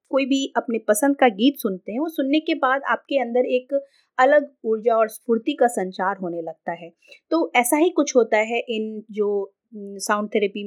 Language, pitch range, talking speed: Hindi, 195-265 Hz, 190 wpm